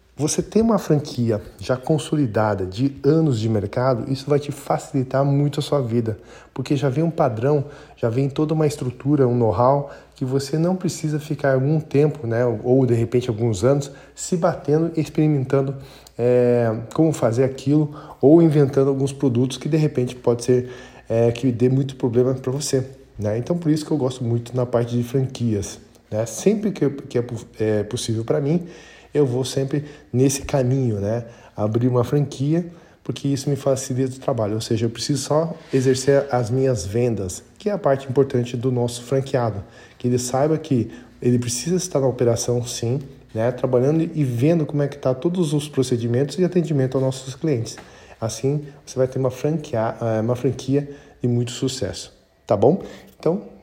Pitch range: 120-145 Hz